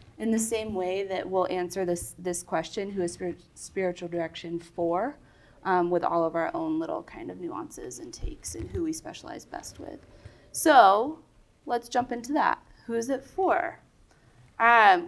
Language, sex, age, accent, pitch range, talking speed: English, female, 20-39, American, 175-220 Hz, 175 wpm